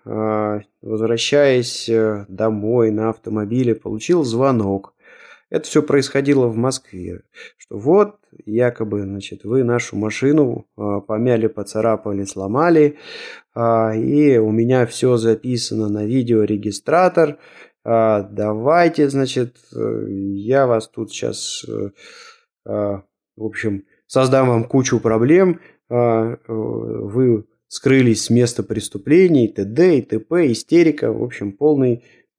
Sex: male